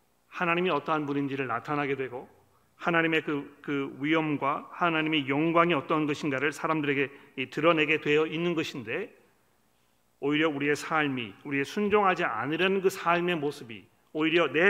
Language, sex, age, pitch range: Korean, male, 40-59, 110-160 Hz